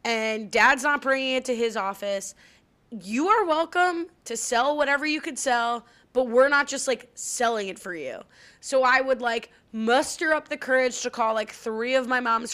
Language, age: English, 20-39